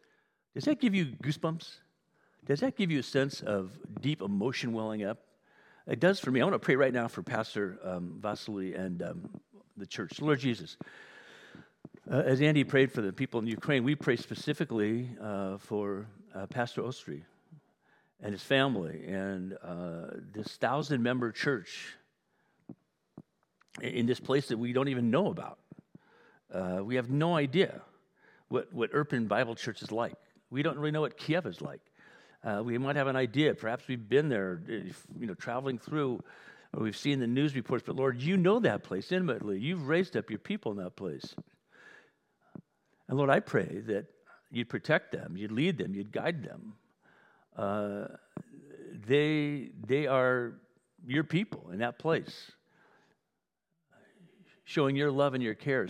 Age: 50-69